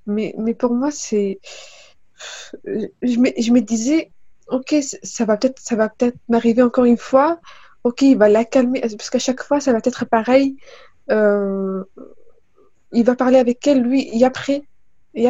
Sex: female